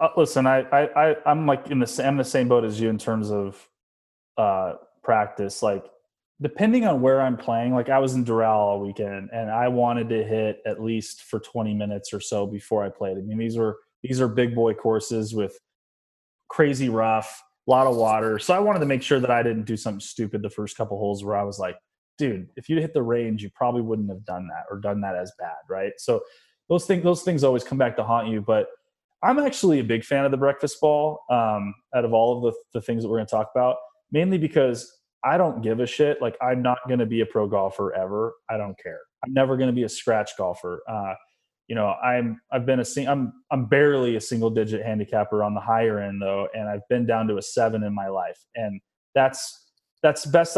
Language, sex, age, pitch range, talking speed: English, male, 20-39, 110-135 Hz, 235 wpm